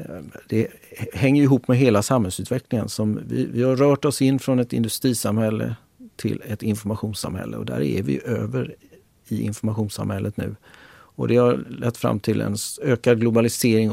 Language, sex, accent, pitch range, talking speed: Swedish, male, native, 105-125 Hz, 155 wpm